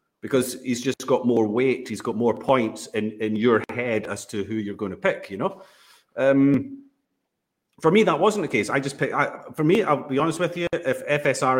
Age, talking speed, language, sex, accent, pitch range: 40-59, 215 wpm, English, male, British, 120-180 Hz